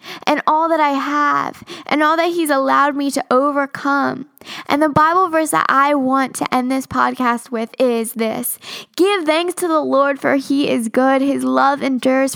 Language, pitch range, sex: English, 235-290 Hz, female